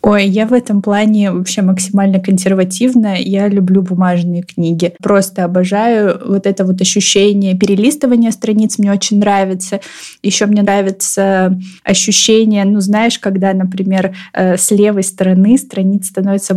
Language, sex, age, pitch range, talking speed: Russian, female, 20-39, 185-210 Hz, 130 wpm